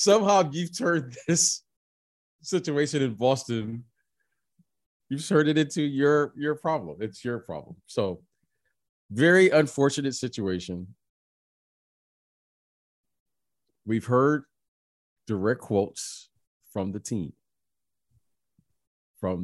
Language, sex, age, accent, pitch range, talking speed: English, male, 30-49, American, 100-155 Hz, 90 wpm